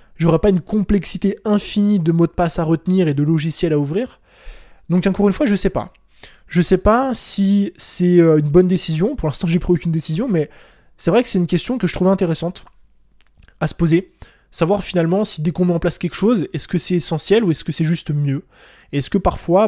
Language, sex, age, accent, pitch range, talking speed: French, male, 20-39, French, 160-190 Hz, 230 wpm